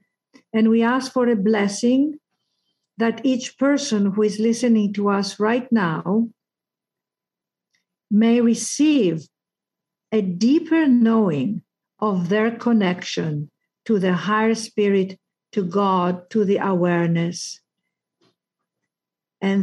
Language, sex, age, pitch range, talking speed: English, female, 50-69, 190-240 Hz, 105 wpm